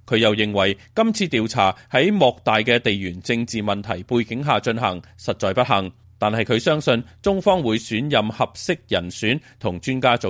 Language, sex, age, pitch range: Chinese, male, 30-49, 100-150 Hz